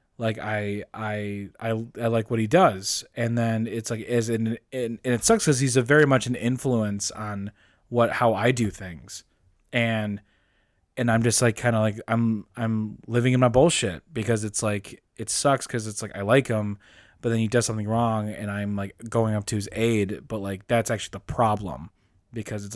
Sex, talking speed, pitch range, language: male, 210 wpm, 100-115 Hz, English